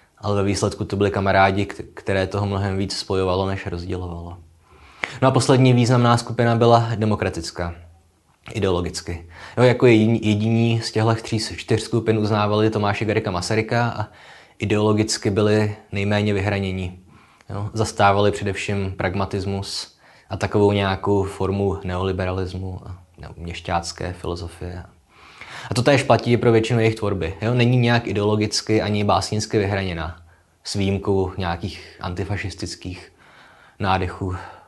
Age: 20-39